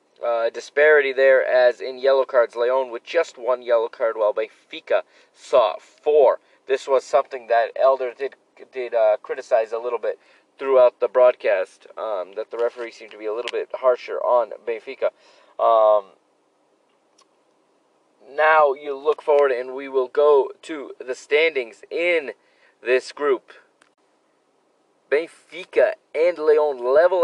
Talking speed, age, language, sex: 140 wpm, 30-49, English, male